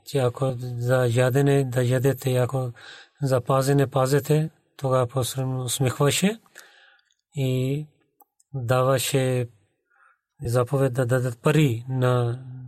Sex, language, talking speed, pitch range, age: male, Bulgarian, 90 wpm, 125-145 Hz, 30-49